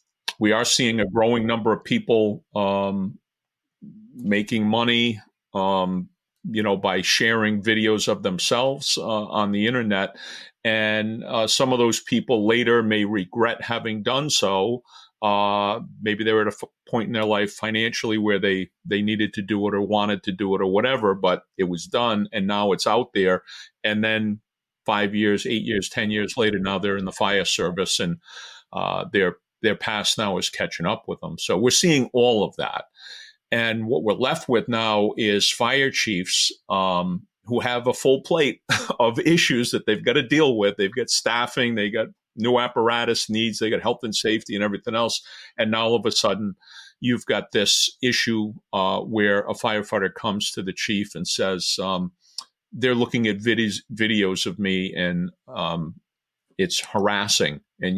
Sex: male